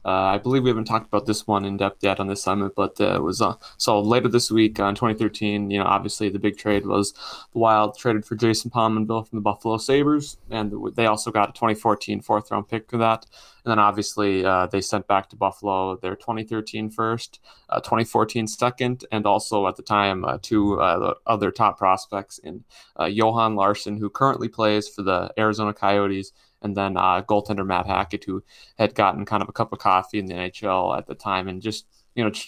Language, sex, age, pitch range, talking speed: English, male, 20-39, 100-110 Hz, 220 wpm